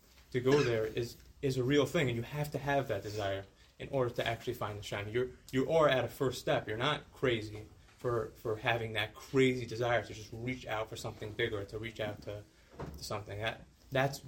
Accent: American